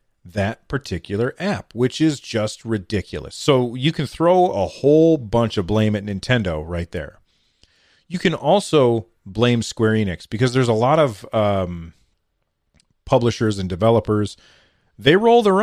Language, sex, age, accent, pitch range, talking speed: English, male, 40-59, American, 100-130 Hz, 145 wpm